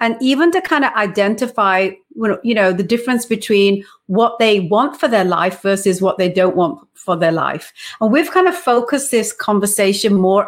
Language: English